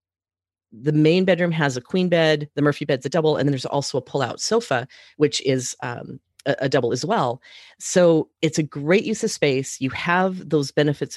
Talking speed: 205 wpm